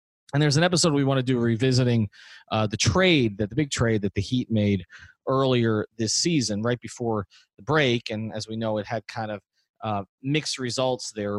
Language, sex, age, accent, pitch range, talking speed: English, male, 30-49, American, 110-150 Hz, 205 wpm